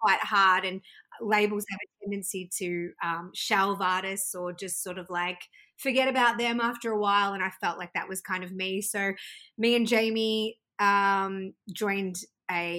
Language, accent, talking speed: English, Australian, 180 wpm